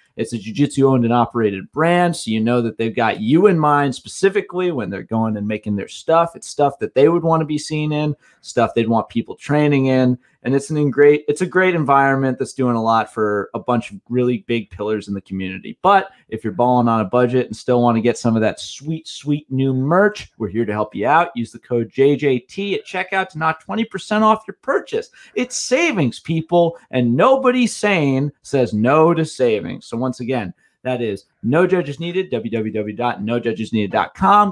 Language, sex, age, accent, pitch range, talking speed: English, male, 30-49, American, 115-165 Hz, 205 wpm